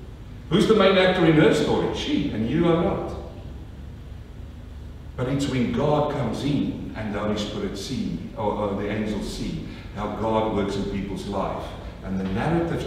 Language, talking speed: English, 170 wpm